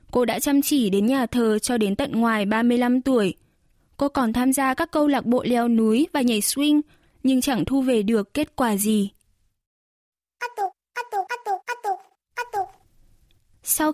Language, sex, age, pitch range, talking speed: Vietnamese, female, 10-29, 230-280 Hz, 150 wpm